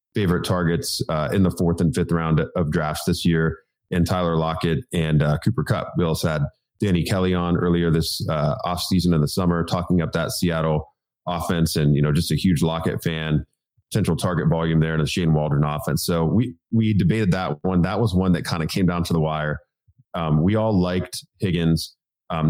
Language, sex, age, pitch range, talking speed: English, male, 30-49, 80-95 Hz, 210 wpm